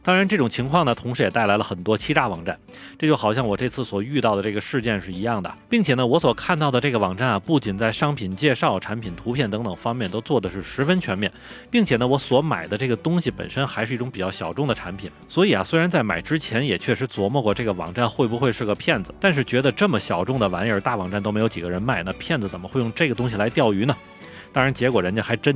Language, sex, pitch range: Chinese, male, 105-145 Hz